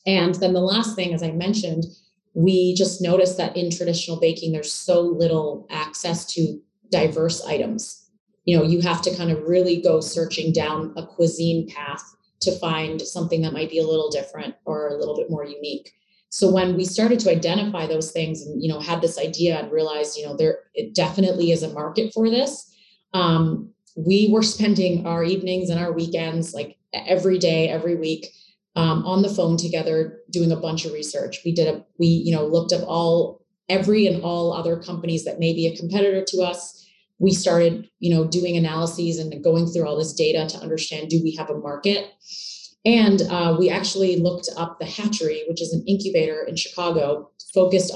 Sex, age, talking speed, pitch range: female, 30-49, 195 wpm, 165-190 Hz